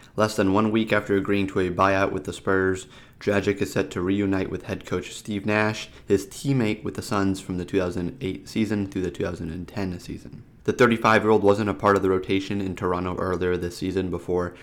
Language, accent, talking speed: English, American, 200 wpm